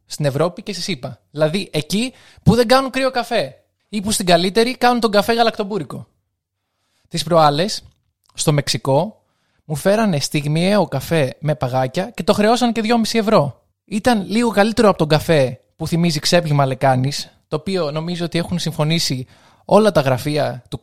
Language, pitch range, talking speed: Greek, 135-200 Hz, 160 wpm